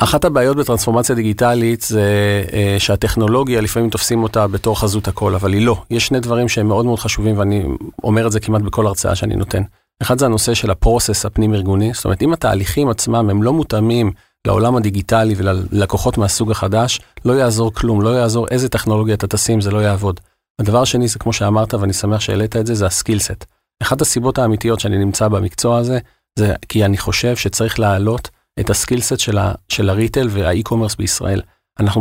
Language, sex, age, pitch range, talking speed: Hebrew, male, 40-59, 105-120 Hz, 165 wpm